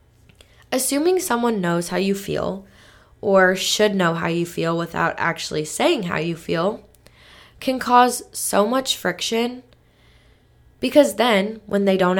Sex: female